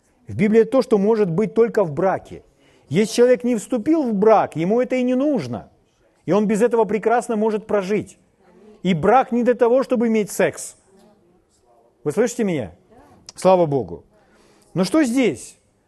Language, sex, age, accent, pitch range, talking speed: Russian, male, 40-59, native, 160-225 Hz, 165 wpm